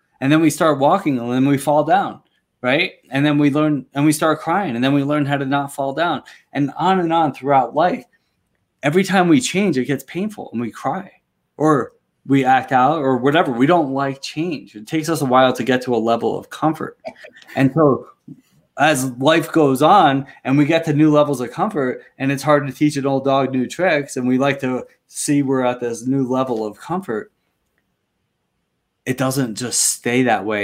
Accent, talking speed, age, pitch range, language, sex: American, 210 wpm, 20-39, 125-155 Hz, English, male